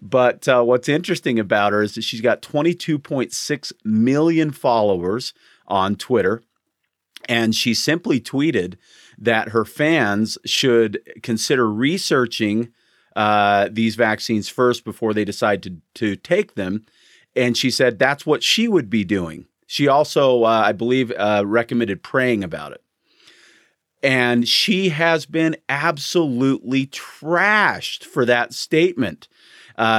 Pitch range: 110-145 Hz